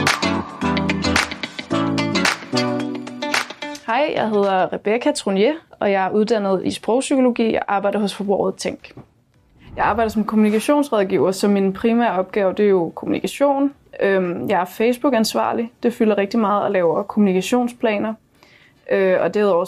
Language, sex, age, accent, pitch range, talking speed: Danish, female, 20-39, native, 190-225 Hz, 120 wpm